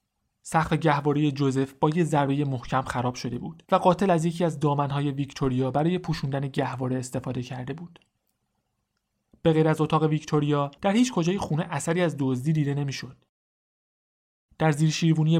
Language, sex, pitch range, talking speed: Persian, male, 135-165 Hz, 155 wpm